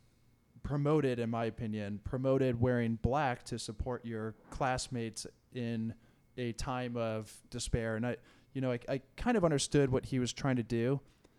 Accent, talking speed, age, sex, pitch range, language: American, 165 wpm, 20-39, male, 115-135 Hz, English